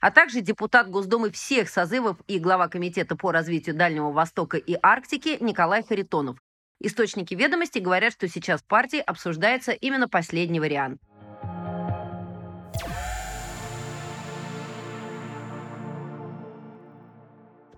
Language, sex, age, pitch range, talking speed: Russian, female, 30-49, 170-235 Hz, 100 wpm